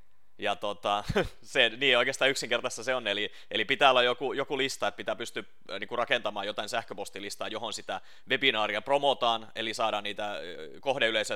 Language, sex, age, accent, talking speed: Finnish, male, 30-49, native, 160 wpm